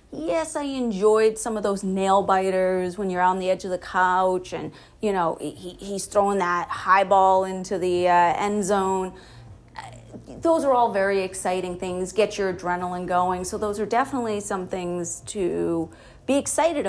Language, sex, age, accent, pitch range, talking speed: English, female, 30-49, American, 185-240 Hz, 175 wpm